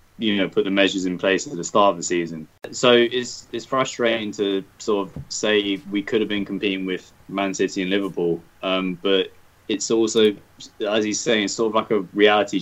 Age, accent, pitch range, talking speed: 20-39, British, 90-100 Hz, 205 wpm